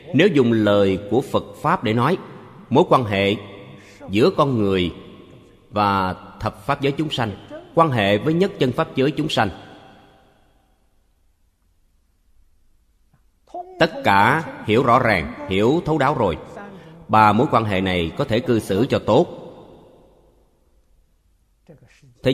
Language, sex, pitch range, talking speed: Vietnamese, male, 85-130 Hz, 135 wpm